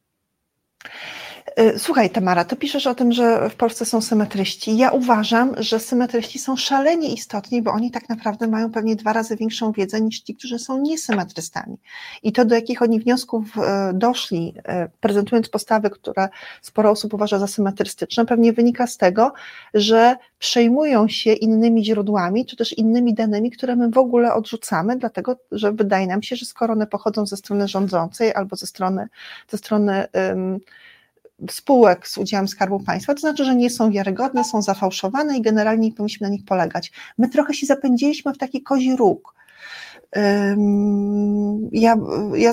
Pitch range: 200-240 Hz